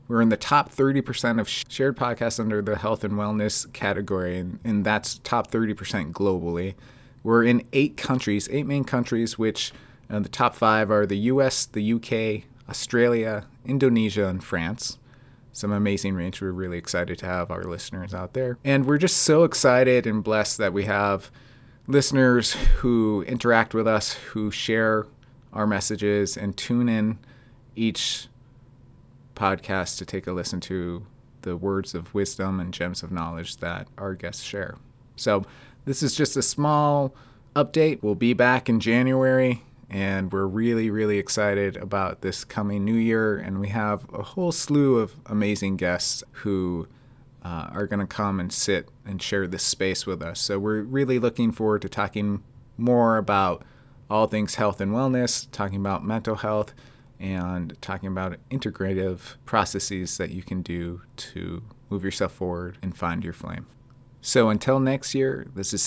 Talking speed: 165 wpm